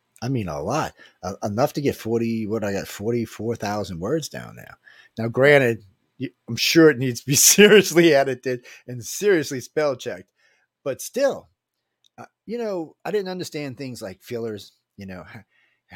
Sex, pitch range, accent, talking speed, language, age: male, 105-140 Hz, American, 165 wpm, English, 40-59